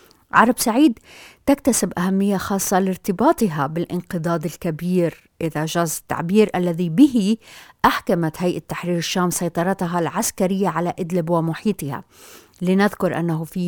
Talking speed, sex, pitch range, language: 110 wpm, female, 165-190 Hz, Arabic